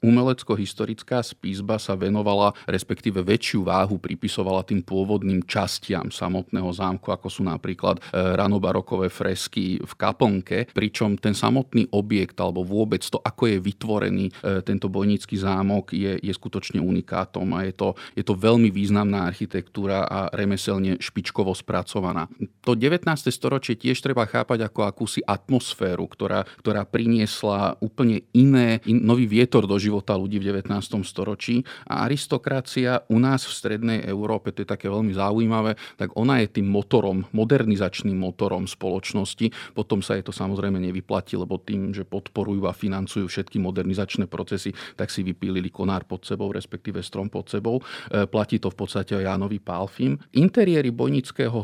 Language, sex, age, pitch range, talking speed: Slovak, male, 40-59, 95-115 Hz, 150 wpm